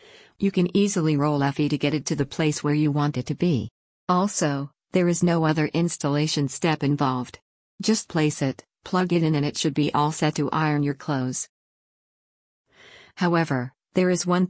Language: English